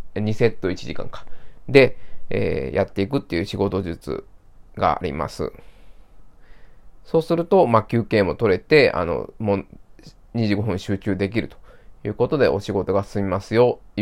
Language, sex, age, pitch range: Japanese, male, 20-39, 100-150 Hz